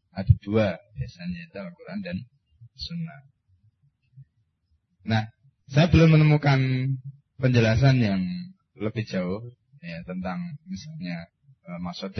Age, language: 30-49, Indonesian